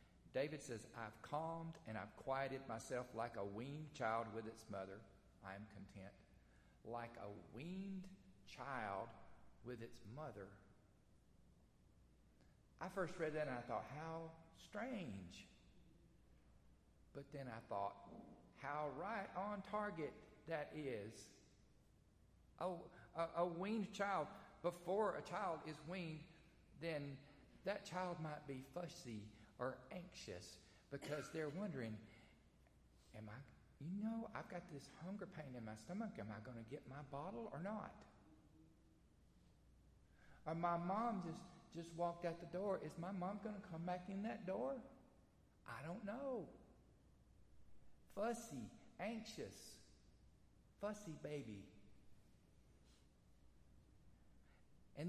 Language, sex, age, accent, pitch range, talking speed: English, male, 50-69, American, 110-180 Hz, 120 wpm